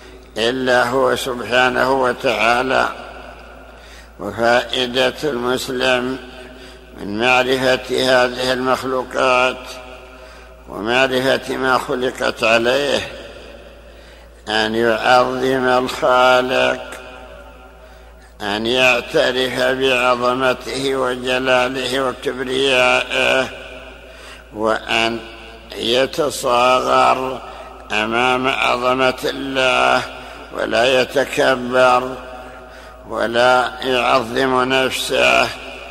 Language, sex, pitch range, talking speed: Arabic, male, 120-130 Hz, 55 wpm